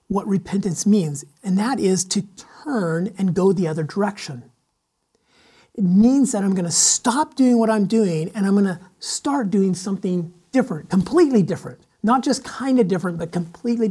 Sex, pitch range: male, 165-220 Hz